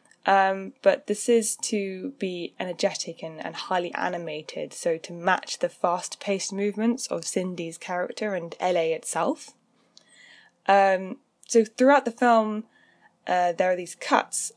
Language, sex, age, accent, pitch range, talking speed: English, female, 10-29, British, 170-220 Hz, 135 wpm